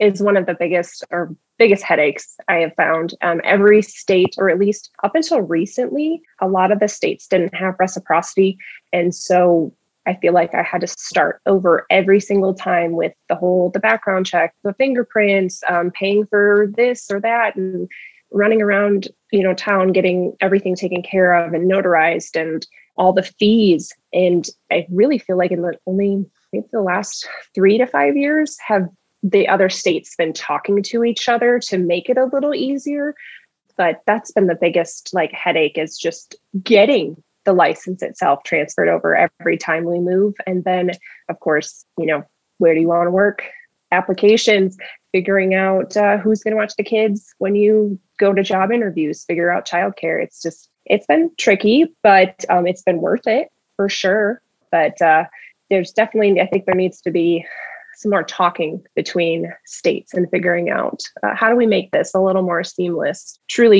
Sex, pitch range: female, 180-210 Hz